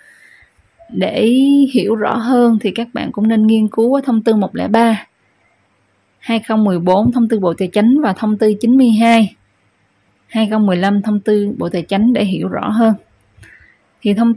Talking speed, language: 150 wpm, Vietnamese